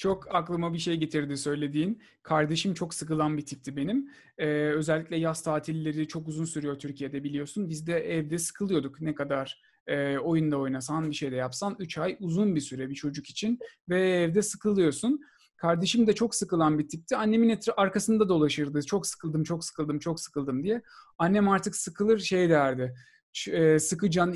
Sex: male